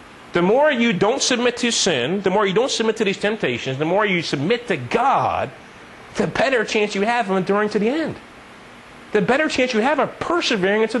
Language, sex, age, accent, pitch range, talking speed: English, male, 30-49, American, 175-230 Hz, 215 wpm